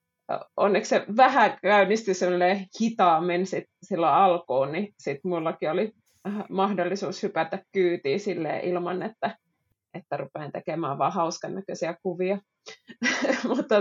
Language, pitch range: Finnish, 170-205 Hz